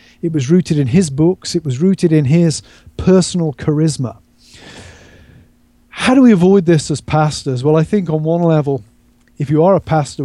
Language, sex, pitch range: English, male, 130-170 Hz